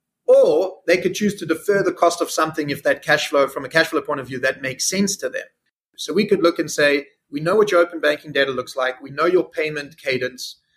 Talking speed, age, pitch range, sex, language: 255 wpm, 30-49, 145-190 Hz, male, English